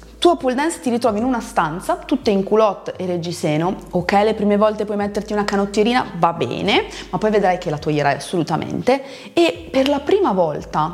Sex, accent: female, native